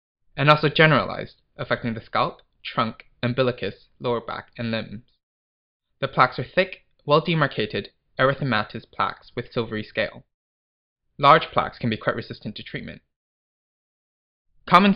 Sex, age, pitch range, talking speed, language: male, 20-39, 110-140 Hz, 125 wpm, English